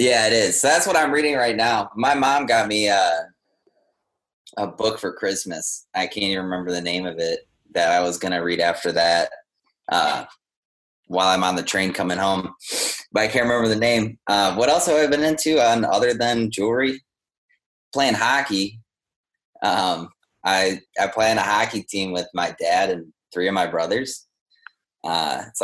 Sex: male